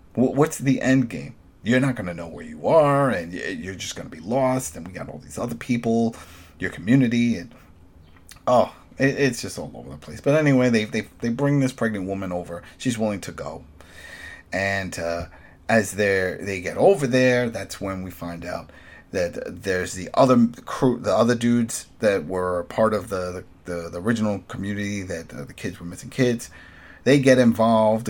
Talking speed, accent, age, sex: 190 wpm, American, 30-49, male